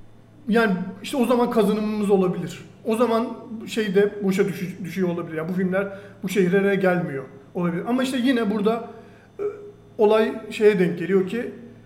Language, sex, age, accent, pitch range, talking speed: Turkish, male, 40-59, native, 175-220 Hz, 150 wpm